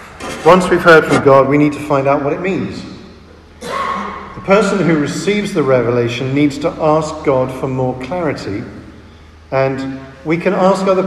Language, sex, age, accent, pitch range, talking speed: English, male, 50-69, British, 120-150 Hz, 170 wpm